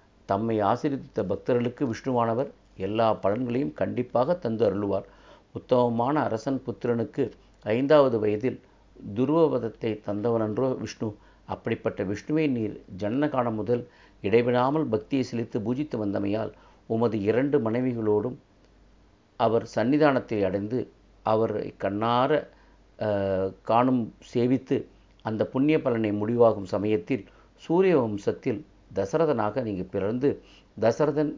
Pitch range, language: 105-130 Hz, Tamil